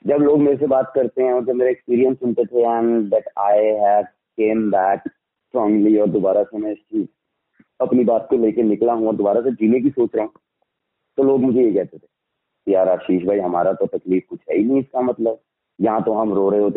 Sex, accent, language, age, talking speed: male, Indian, English, 30-49, 65 wpm